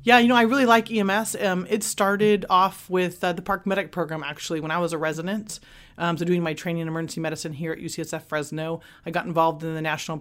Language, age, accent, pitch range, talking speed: English, 30-49, American, 155-185 Hz, 240 wpm